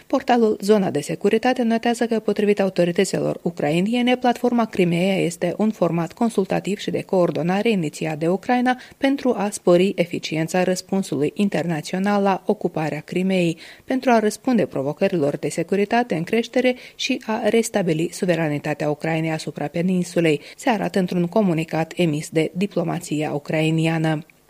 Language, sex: Romanian, female